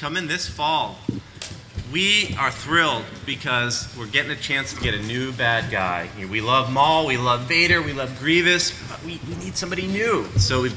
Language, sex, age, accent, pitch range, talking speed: English, male, 30-49, American, 110-145 Hz, 185 wpm